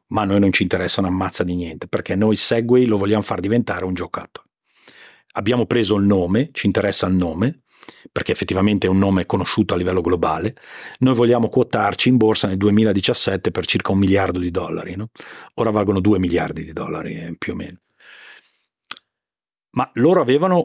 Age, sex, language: 40-59, male, Italian